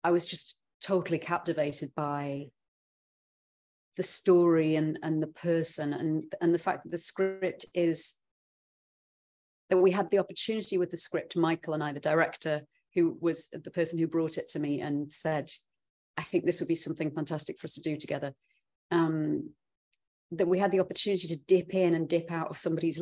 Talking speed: 180 wpm